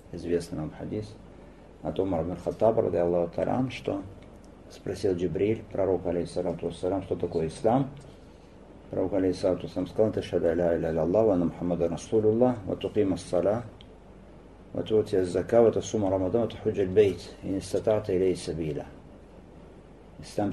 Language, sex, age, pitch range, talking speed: Russian, male, 50-69, 85-110 Hz, 65 wpm